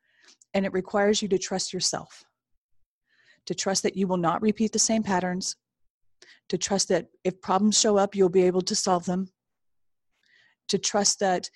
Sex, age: female, 40-59